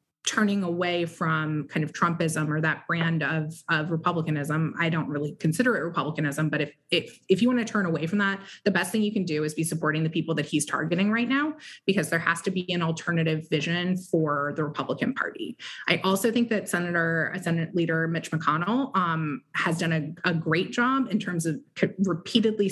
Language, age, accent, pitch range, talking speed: English, 20-39, American, 160-195 Hz, 205 wpm